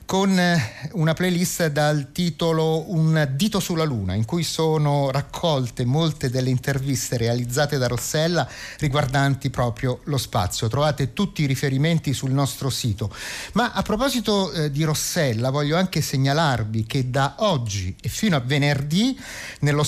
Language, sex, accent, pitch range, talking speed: Italian, male, native, 125-165 Hz, 140 wpm